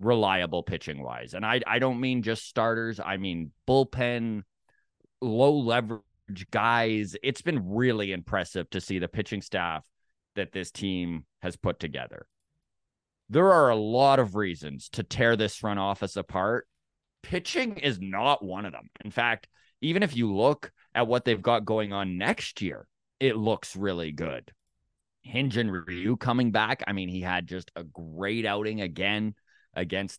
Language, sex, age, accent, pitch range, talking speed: English, male, 30-49, American, 95-120 Hz, 165 wpm